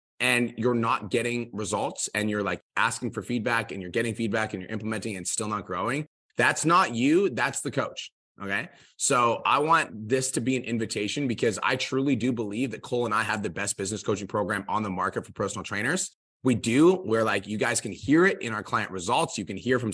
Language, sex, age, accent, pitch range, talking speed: English, male, 20-39, American, 105-130 Hz, 230 wpm